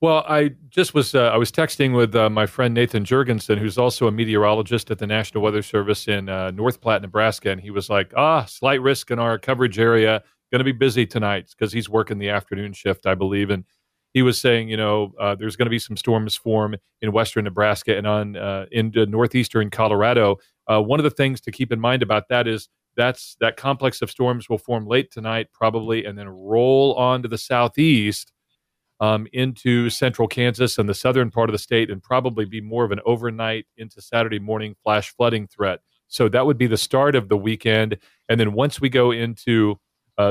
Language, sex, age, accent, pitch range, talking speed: English, male, 40-59, American, 105-125 Hz, 215 wpm